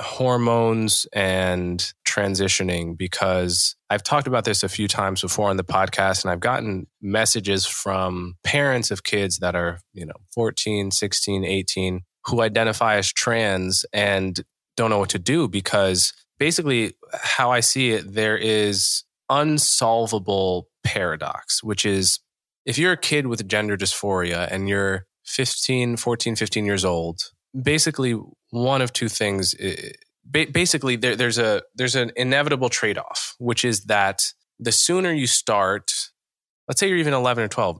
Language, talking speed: English, 150 wpm